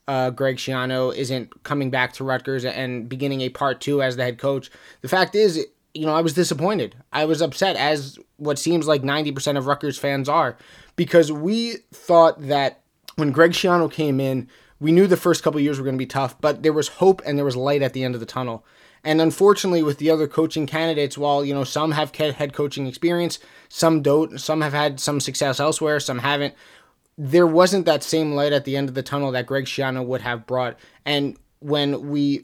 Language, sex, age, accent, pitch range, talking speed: English, male, 20-39, American, 135-155 Hz, 220 wpm